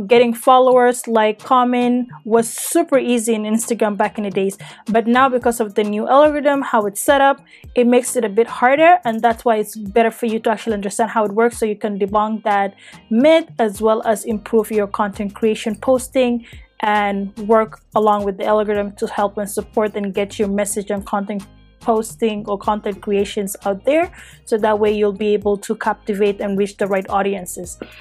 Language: English